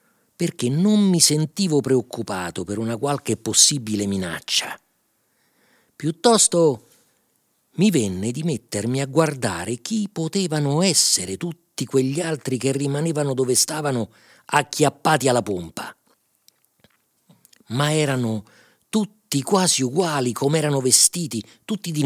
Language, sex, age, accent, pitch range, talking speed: Italian, male, 50-69, native, 115-185 Hz, 110 wpm